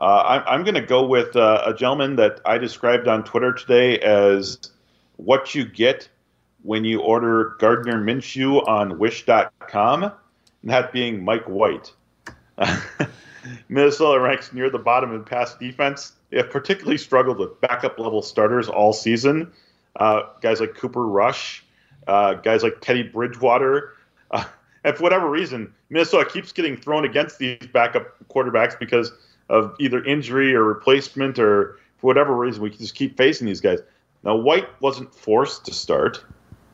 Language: English